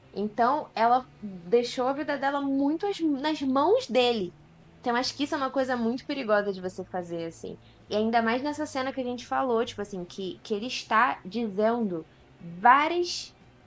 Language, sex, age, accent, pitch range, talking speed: Portuguese, female, 20-39, Brazilian, 190-270 Hz, 175 wpm